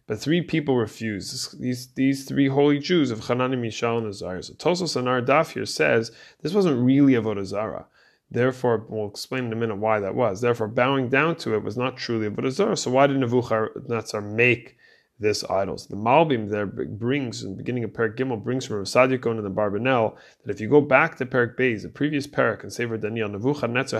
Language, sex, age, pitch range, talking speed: English, male, 20-39, 110-135 Hz, 210 wpm